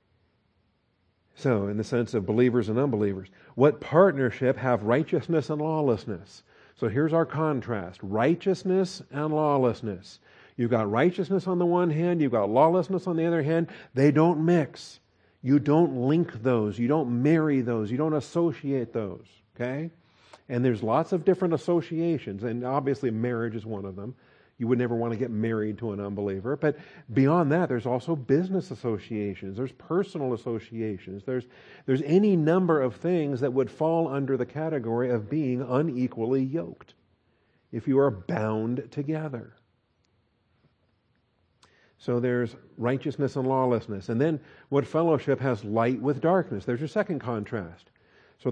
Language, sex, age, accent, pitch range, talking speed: English, male, 50-69, American, 115-155 Hz, 150 wpm